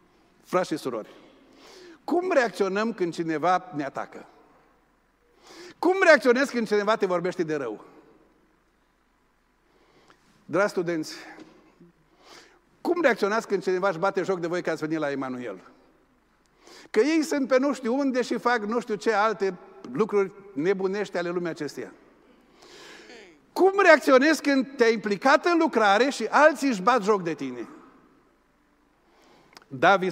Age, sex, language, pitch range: 50-69, male, Romanian, 200-310 Hz